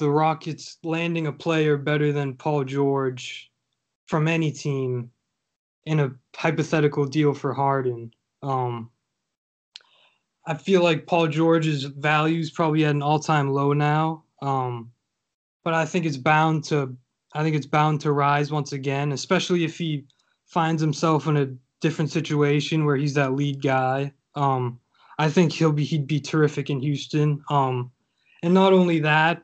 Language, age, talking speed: English, 20-39, 155 wpm